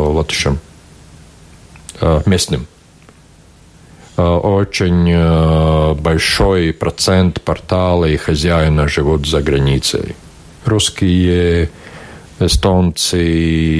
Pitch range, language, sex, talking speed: 80-100 Hz, Russian, male, 55 wpm